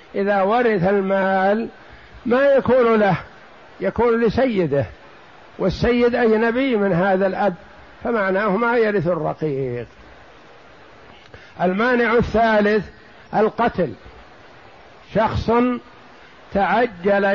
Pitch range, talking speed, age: 170-225 Hz, 75 wpm, 60-79